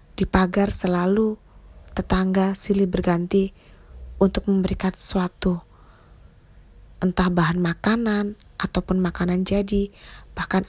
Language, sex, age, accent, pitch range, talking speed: Indonesian, female, 20-39, native, 175-200 Hz, 90 wpm